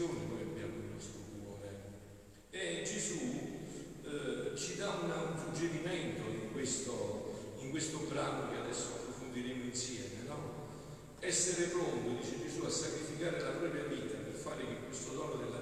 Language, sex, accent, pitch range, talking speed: Italian, male, native, 105-155 Hz, 145 wpm